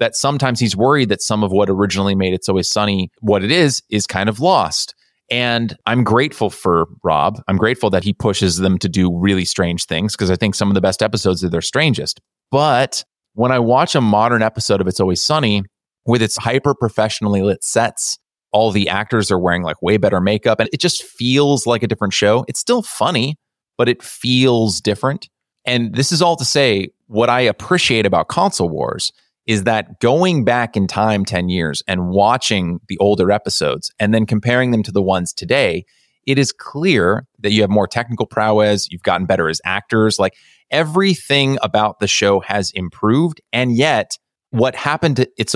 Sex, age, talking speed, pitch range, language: male, 30-49, 195 wpm, 95-120 Hz, English